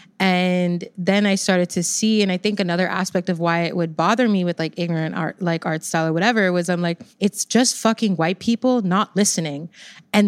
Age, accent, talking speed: 20-39, American, 215 wpm